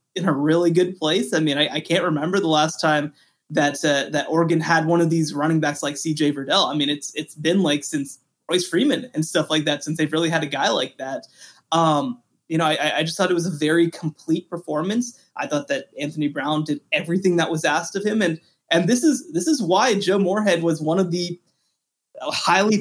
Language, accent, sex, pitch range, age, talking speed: English, American, male, 155-200 Hz, 20-39, 230 wpm